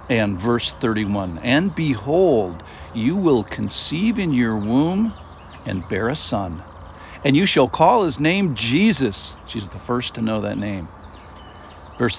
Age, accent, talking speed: 60-79, American, 150 wpm